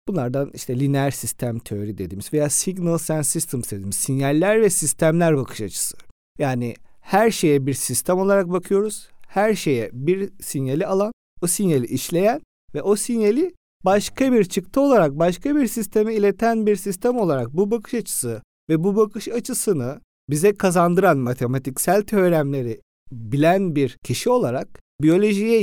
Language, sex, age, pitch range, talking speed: Turkish, male, 50-69, 125-200 Hz, 145 wpm